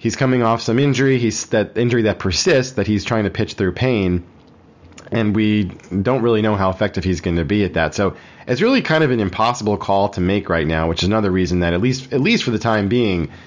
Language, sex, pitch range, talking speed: English, male, 90-115 Hz, 245 wpm